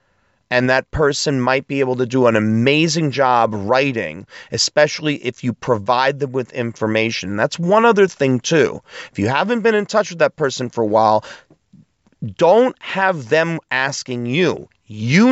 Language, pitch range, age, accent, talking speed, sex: English, 115-150 Hz, 30-49, American, 165 wpm, male